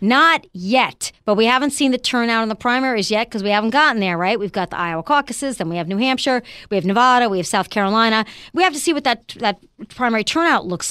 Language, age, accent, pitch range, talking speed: English, 40-59, American, 205-275 Hz, 250 wpm